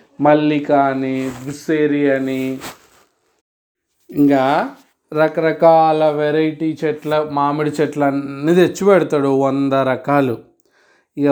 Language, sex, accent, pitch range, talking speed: Telugu, male, native, 130-150 Hz, 80 wpm